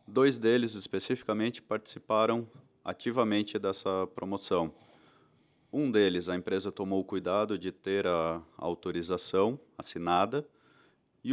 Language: Portuguese